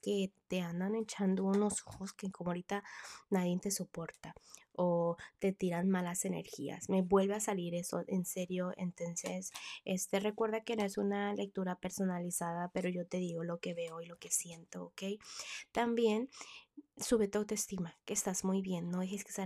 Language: Spanish